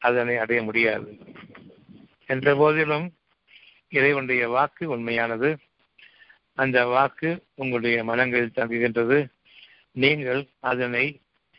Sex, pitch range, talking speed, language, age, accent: male, 120-145 Hz, 85 wpm, Tamil, 60-79, native